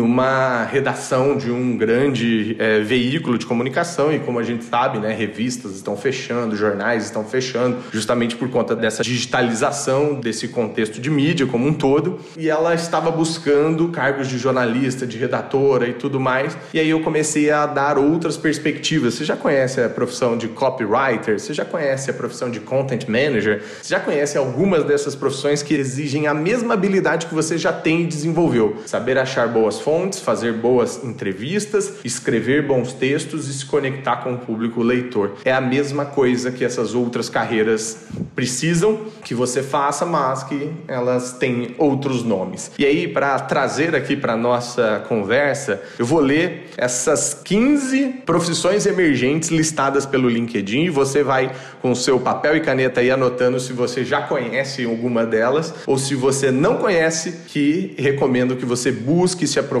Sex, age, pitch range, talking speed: male, 30-49, 125-150 Hz, 170 wpm